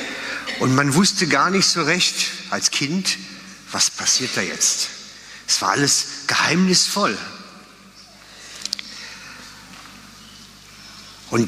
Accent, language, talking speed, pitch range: German, German, 95 wpm, 125-180 Hz